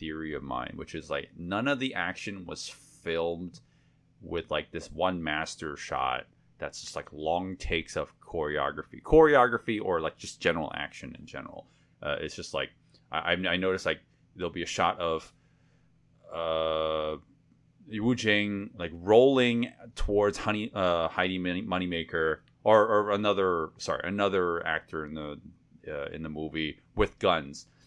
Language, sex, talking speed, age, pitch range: English, male, 150 wpm, 30-49, 80-105 Hz